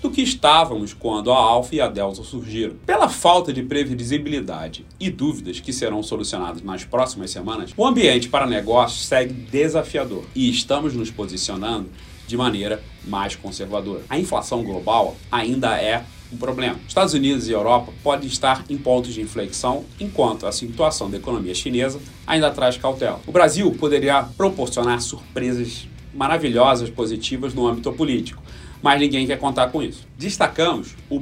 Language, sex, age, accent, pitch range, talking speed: Portuguese, male, 40-59, Brazilian, 110-145 Hz, 155 wpm